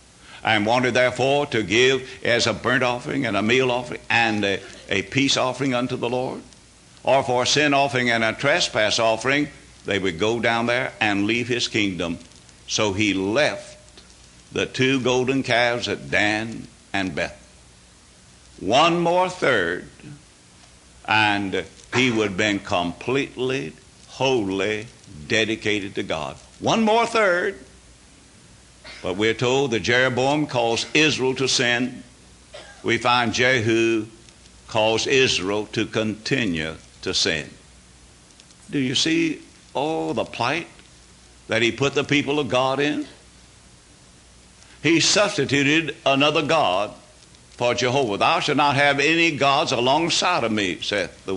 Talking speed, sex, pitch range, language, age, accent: 135 wpm, male, 100-135 Hz, English, 60-79, American